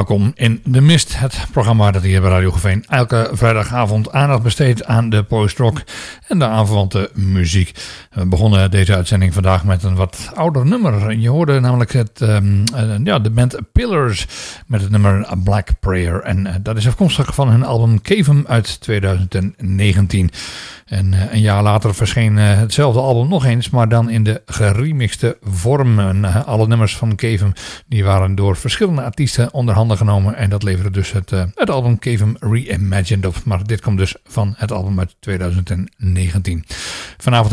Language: English